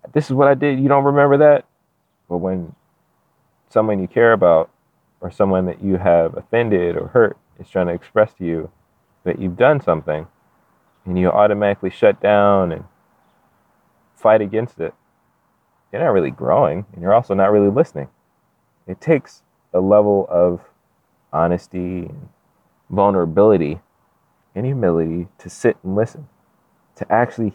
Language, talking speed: English, 145 wpm